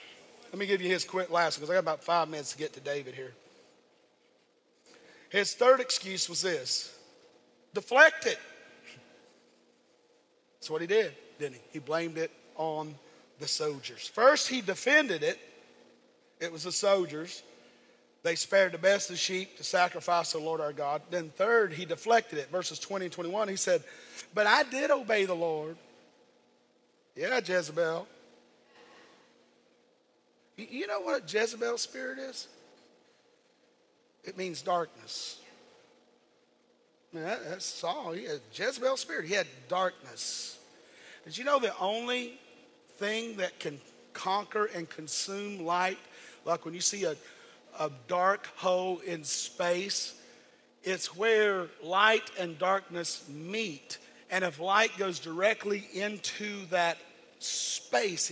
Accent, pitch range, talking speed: American, 165-220 Hz, 135 wpm